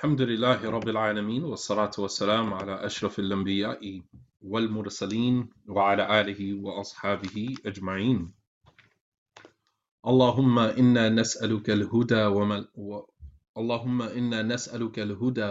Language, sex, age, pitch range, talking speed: English, male, 30-49, 100-115 Hz, 85 wpm